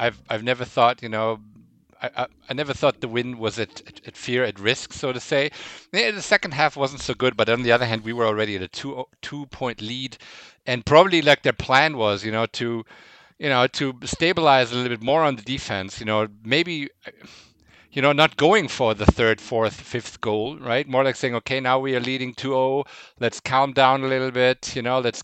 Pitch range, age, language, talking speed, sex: 120-140 Hz, 50-69, English, 230 wpm, male